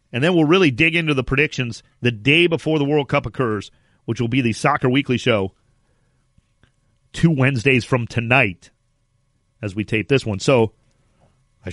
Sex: male